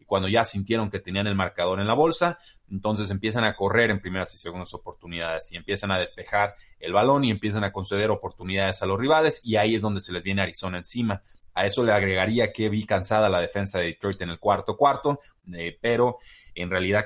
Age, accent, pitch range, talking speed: 30-49, Mexican, 95-115 Hz, 215 wpm